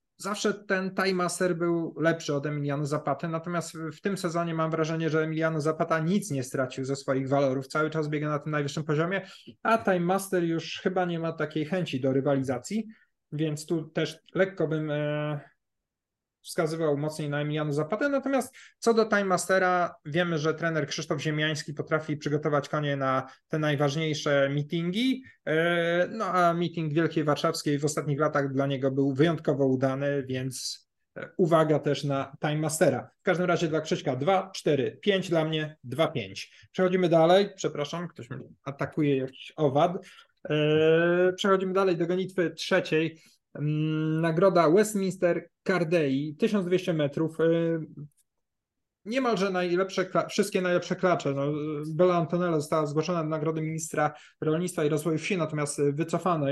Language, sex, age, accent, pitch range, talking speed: Polish, male, 20-39, native, 150-185 Hz, 140 wpm